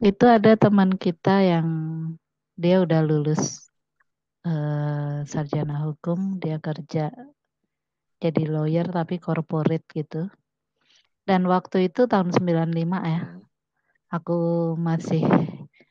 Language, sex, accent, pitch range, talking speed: Indonesian, female, native, 155-190 Hz, 100 wpm